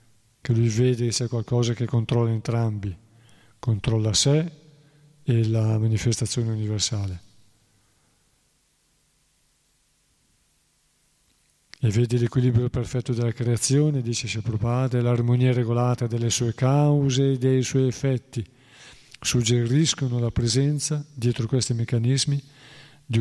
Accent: native